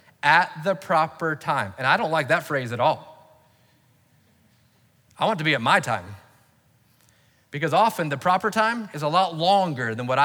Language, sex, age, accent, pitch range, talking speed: English, male, 30-49, American, 115-155 Hz, 175 wpm